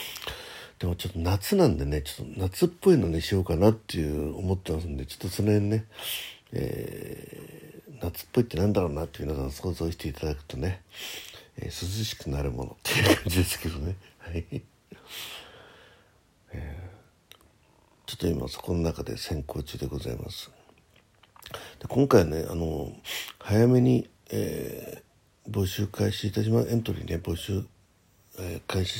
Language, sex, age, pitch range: Japanese, male, 60-79, 85-105 Hz